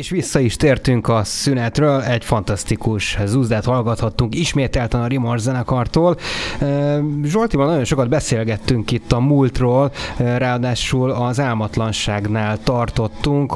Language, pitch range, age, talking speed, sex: Hungarian, 105-130 Hz, 20-39, 110 wpm, male